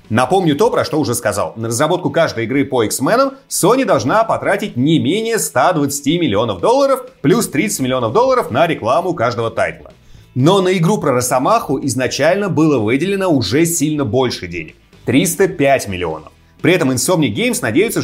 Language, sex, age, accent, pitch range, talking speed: Russian, male, 30-49, native, 120-175 Hz, 160 wpm